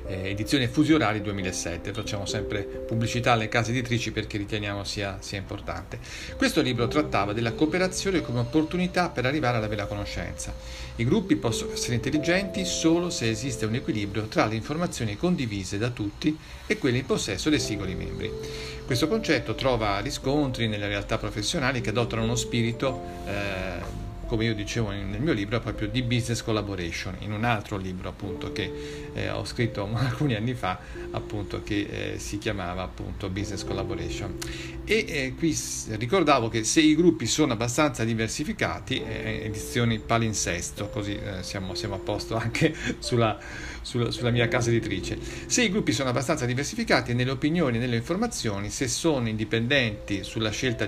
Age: 40-59